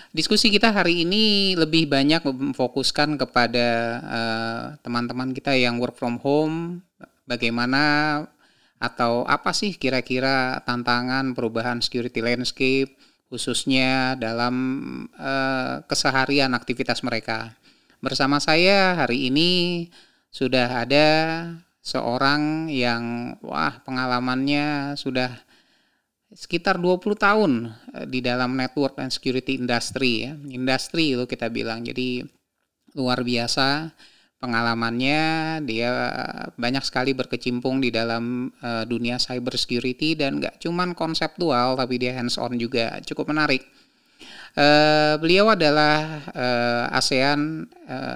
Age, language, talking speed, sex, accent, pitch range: 30-49, Indonesian, 105 wpm, male, native, 125-150 Hz